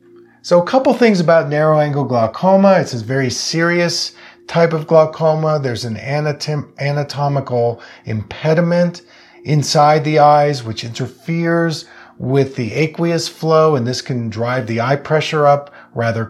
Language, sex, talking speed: English, male, 135 wpm